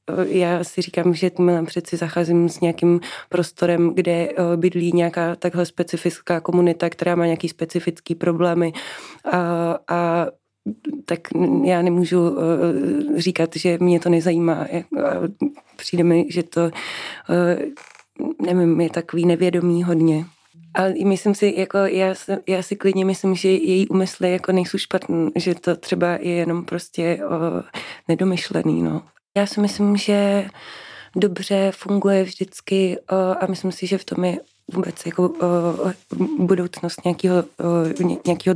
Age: 20-39